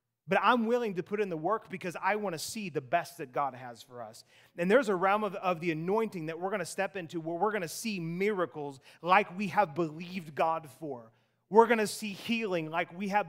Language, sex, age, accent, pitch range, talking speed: English, male, 30-49, American, 190-255 Hz, 245 wpm